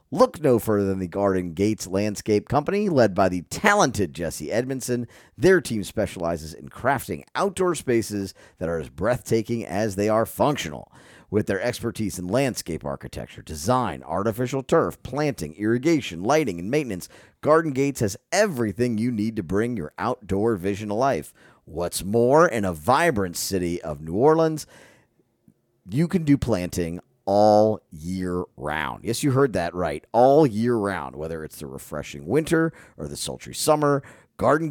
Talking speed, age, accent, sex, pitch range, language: 155 wpm, 40-59, American, male, 90-130 Hz, English